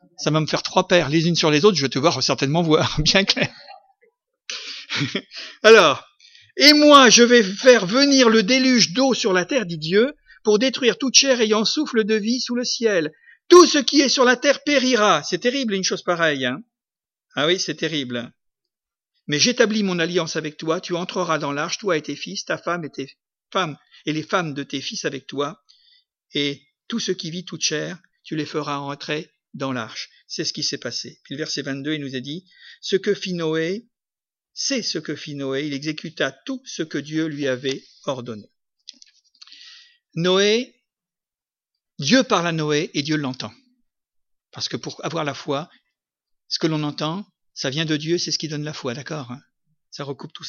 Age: 50-69